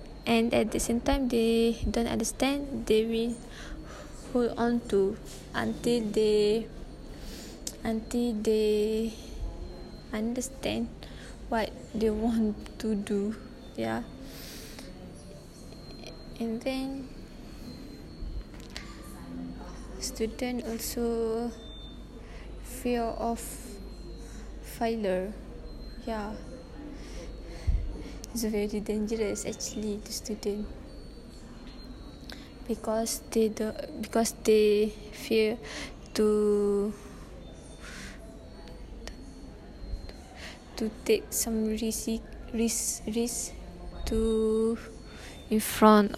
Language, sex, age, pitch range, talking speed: English, female, 20-39, 210-235 Hz, 70 wpm